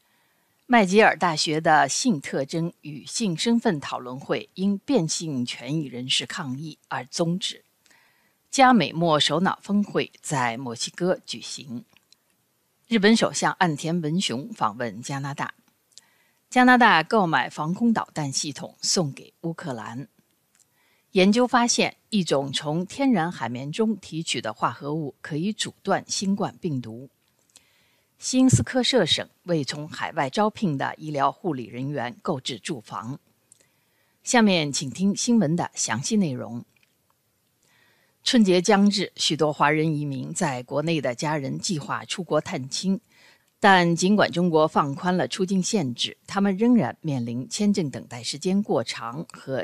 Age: 50-69